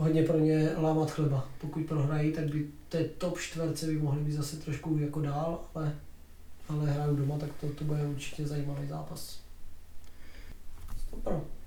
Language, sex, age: Czech, male, 20-39